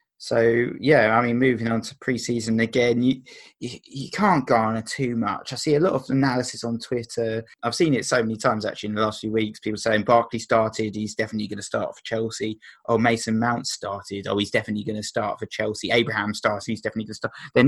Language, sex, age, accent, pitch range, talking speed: English, male, 20-39, British, 110-120 Hz, 225 wpm